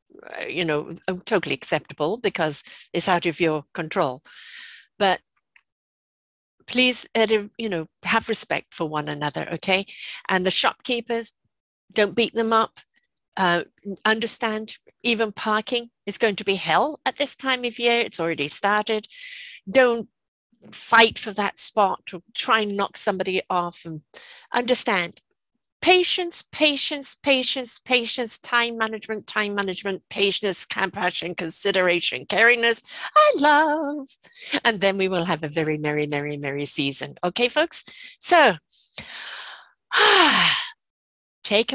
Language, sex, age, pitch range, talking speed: English, female, 50-69, 175-245 Hz, 125 wpm